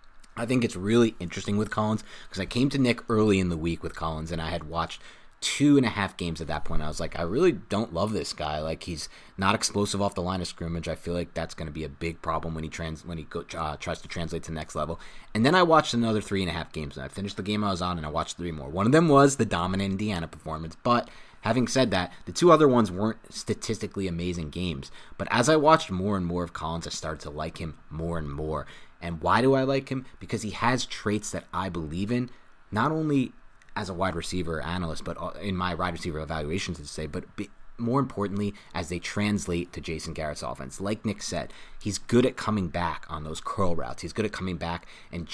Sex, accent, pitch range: male, American, 80-110 Hz